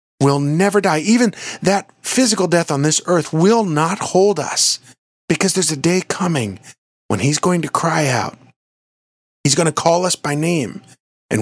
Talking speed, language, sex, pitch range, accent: 170 wpm, English, male, 115-170 Hz, American